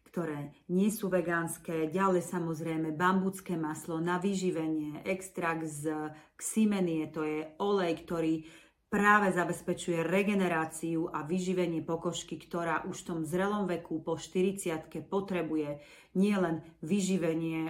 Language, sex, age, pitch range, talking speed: Slovak, female, 40-59, 165-185 Hz, 115 wpm